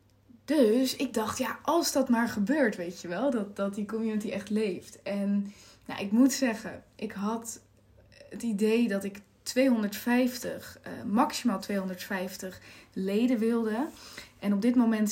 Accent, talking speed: Dutch, 145 wpm